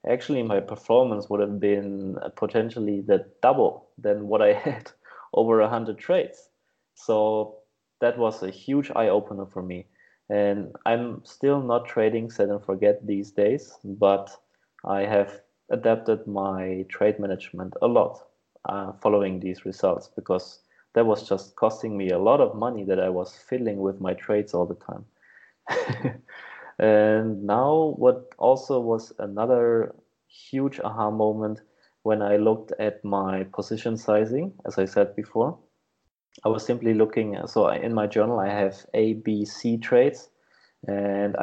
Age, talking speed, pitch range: 20-39, 150 wpm, 100-115 Hz